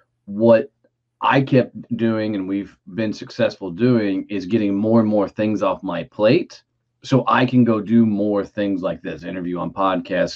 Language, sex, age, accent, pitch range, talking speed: English, male, 30-49, American, 95-120 Hz, 175 wpm